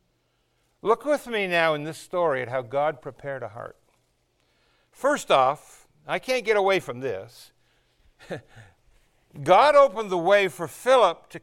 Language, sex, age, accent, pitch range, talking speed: English, male, 60-79, American, 160-215 Hz, 145 wpm